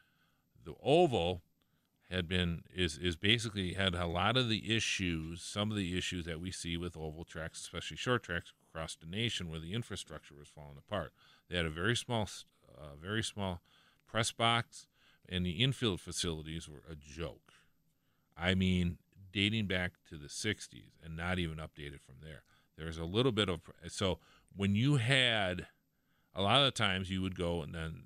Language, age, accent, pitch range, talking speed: English, 40-59, American, 80-100 Hz, 180 wpm